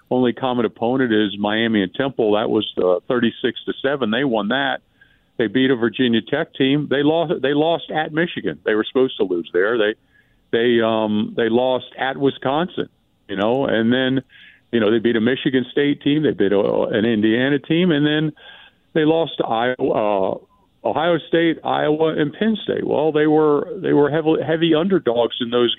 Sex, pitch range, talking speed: male, 115-145 Hz, 190 wpm